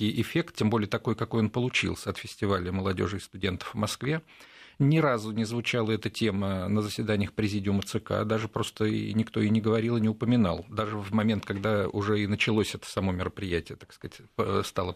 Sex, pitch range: male, 100-120 Hz